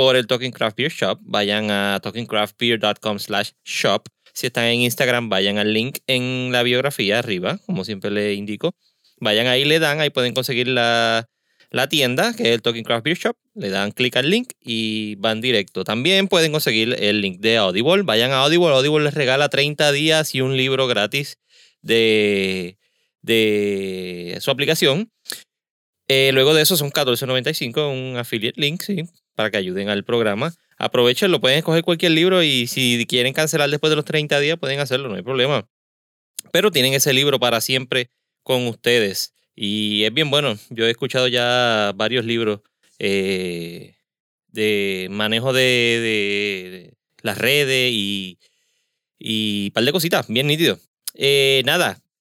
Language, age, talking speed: Spanish, 30-49, 165 wpm